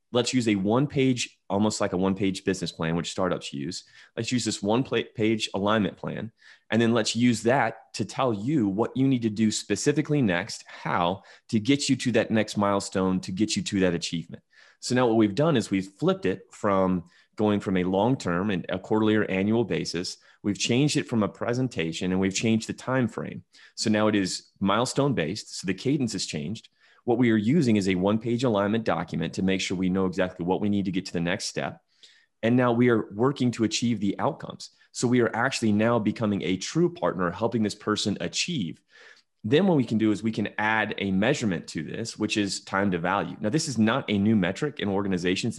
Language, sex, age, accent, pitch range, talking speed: English, male, 30-49, American, 95-115 Hz, 215 wpm